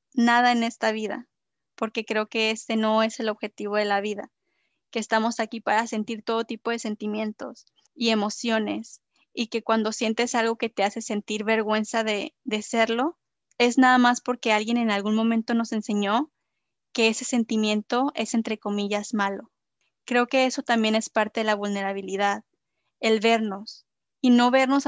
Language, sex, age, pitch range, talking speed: Spanish, female, 20-39, 215-235 Hz, 170 wpm